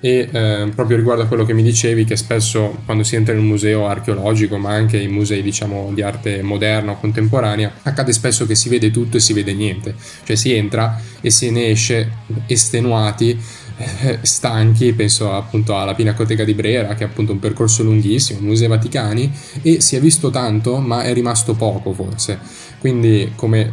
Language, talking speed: Italian, 190 wpm